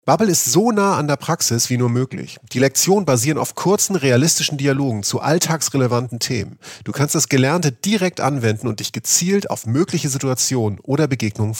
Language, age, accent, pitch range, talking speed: German, 40-59, German, 115-160 Hz, 175 wpm